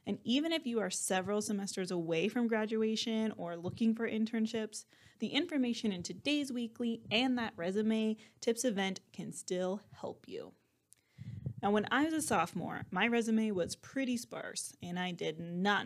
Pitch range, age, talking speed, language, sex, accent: 180-235 Hz, 20-39, 165 wpm, English, female, American